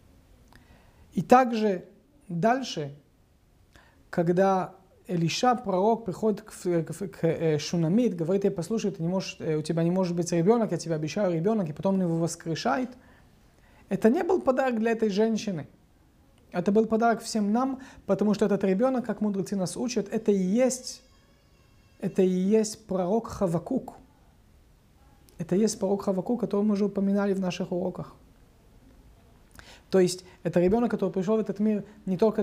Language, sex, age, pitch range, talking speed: Russian, male, 30-49, 165-210 Hz, 150 wpm